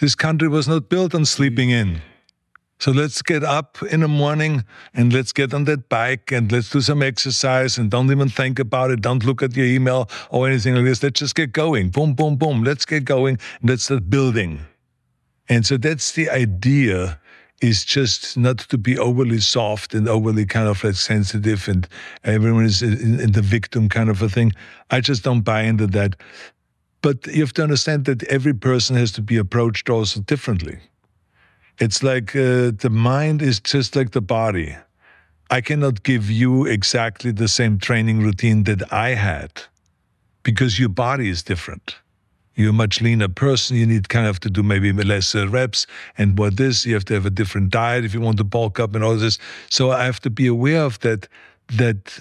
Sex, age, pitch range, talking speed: male, 50-69, 110-135 Hz, 200 wpm